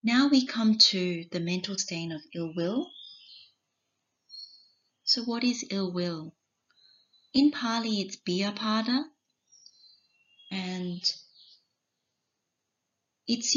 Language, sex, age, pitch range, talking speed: English, female, 30-49, 175-225 Hz, 95 wpm